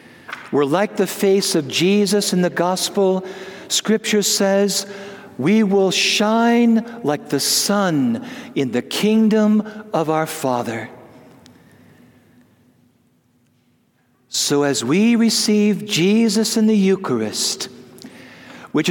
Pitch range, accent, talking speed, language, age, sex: 150-220 Hz, American, 100 wpm, English, 60-79, male